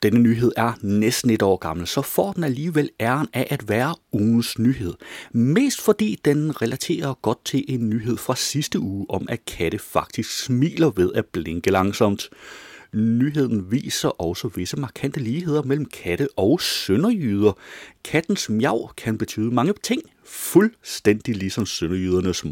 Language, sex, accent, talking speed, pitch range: Danish, male, native, 150 wpm, 95-135 Hz